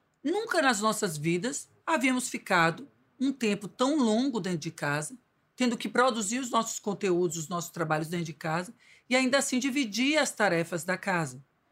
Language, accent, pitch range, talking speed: Portuguese, Brazilian, 185-250 Hz, 170 wpm